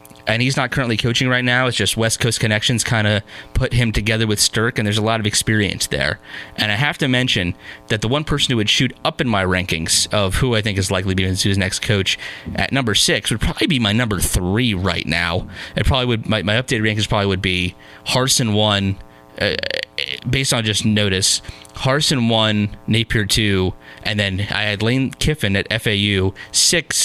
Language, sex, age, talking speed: English, male, 30-49, 210 wpm